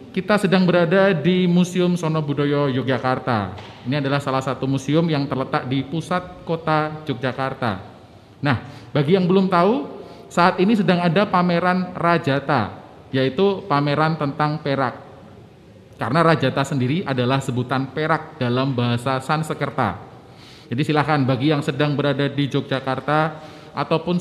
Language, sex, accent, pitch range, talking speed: Indonesian, male, native, 125-160 Hz, 130 wpm